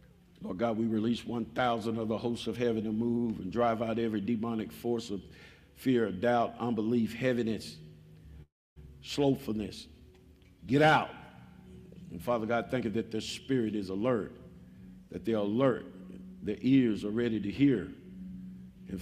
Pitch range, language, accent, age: 90-120 Hz, English, American, 50-69